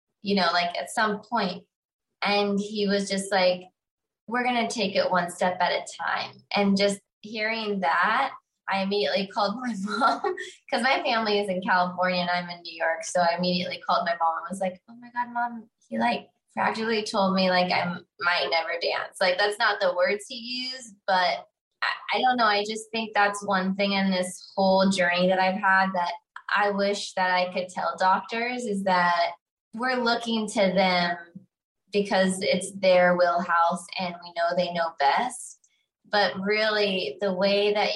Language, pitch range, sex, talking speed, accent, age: English, 180-215 Hz, female, 185 wpm, American, 20-39